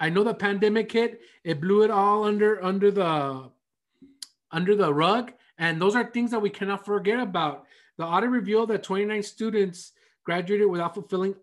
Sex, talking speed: male, 175 wpm